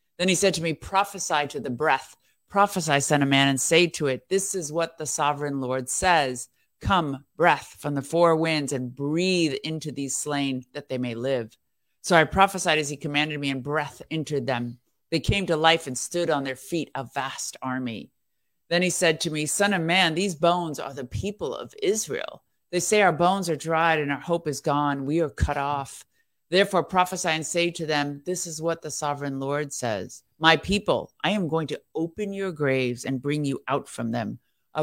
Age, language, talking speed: 50-69, English, 210 wpm